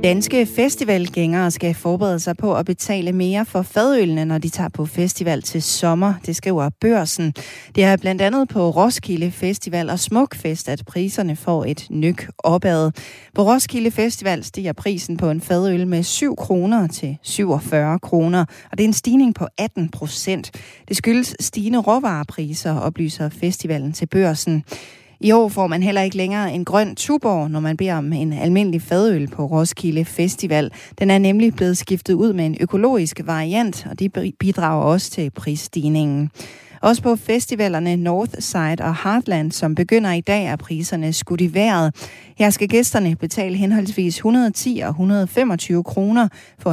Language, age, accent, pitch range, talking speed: Danish, 30-49, native, 160-205 Hz, 165 wpm